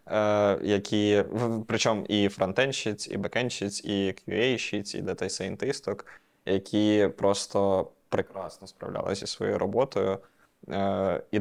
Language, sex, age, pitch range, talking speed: Ukrainian, male, 20-39, 100-110 Hz, 105 wpm